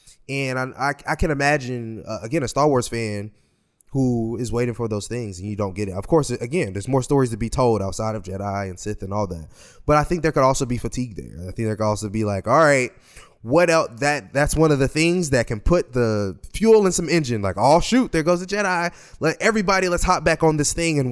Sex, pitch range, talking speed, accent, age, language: male, 110-150 Hz, 255 wpm, American, 20-39, English